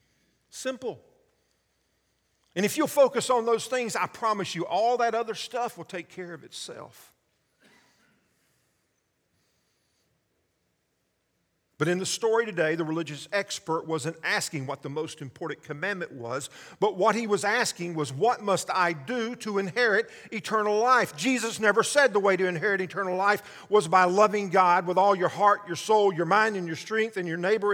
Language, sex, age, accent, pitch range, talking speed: English, male, 50-69, American, 160-220 Hz, 165 wpm